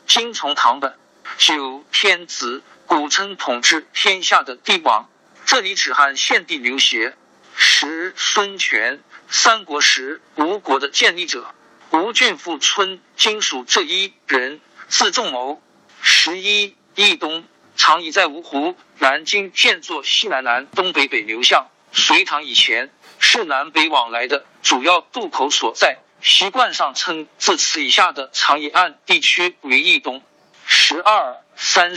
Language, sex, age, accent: Chinese, male, 50-69, native